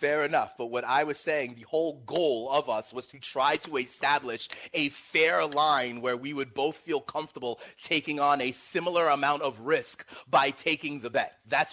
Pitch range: 140-230 Hz